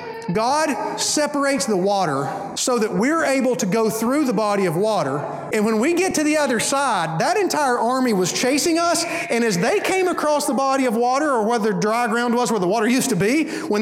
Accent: American